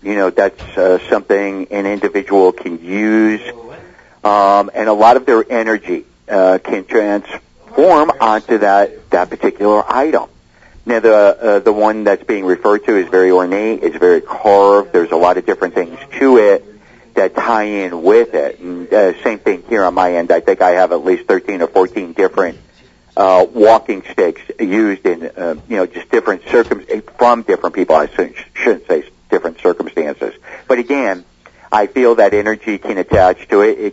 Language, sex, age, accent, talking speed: English, male, 50-69, American, 175 wpm